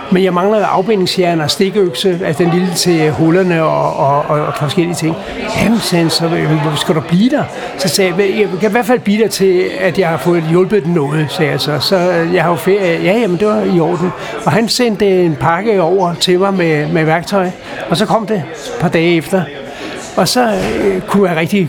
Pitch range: 165-200 Hz